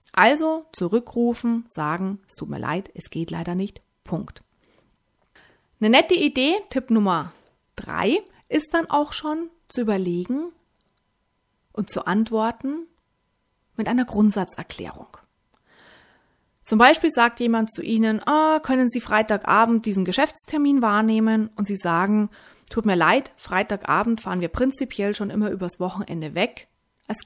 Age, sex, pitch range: 30-49, female, 190-255 Hz